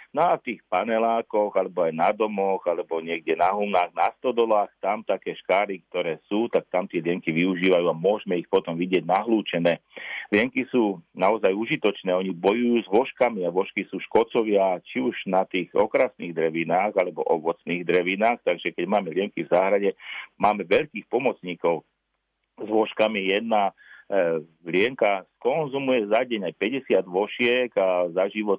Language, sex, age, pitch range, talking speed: Slovak, male, 40-59, 90-110 Hz, 150 wpm